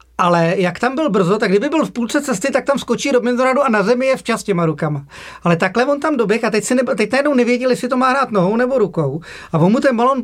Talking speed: 275 wpm